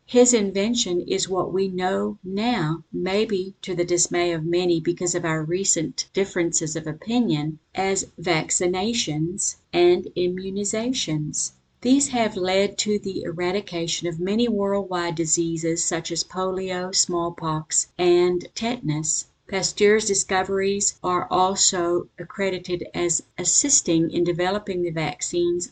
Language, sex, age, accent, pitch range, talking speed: English, female, 50-69, American, 170-195 Hz, 120 wpm